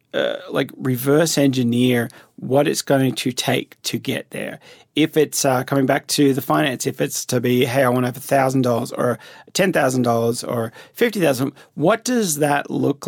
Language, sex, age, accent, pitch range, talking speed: English, male, 30-49, Australian, 120-145 Hz, 195 wpm